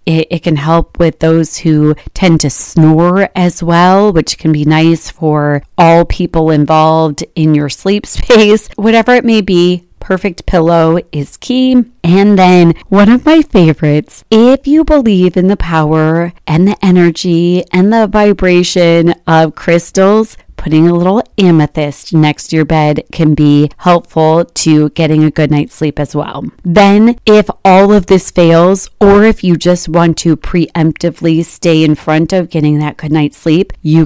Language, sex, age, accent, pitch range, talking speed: English, female, 30-49, American, 160-190 Hz, 165 wpm